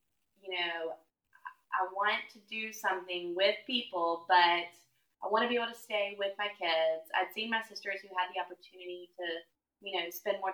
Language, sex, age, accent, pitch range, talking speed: English, female, 20-39, American, 175-200 Hz, 190 wpm